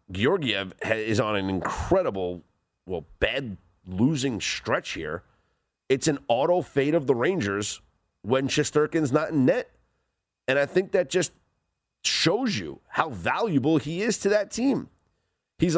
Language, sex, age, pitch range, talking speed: English, male, 30-49, 95-145 Hz, 135 wpm